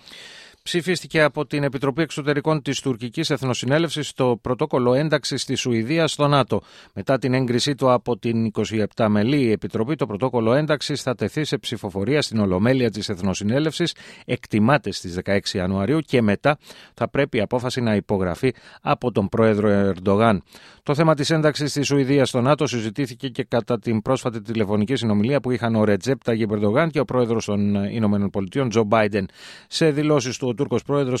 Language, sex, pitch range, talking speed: Greek, male, 110-145 Hz, 140 wpm